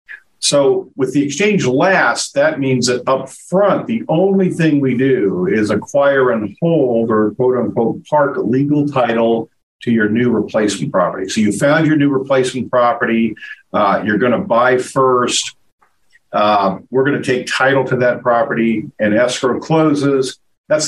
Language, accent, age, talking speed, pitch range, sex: English, American, 50-69, 160 wpm, 120-145 Hz, male